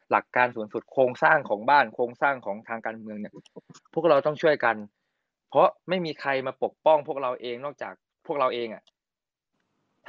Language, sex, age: Thai, male, 20-39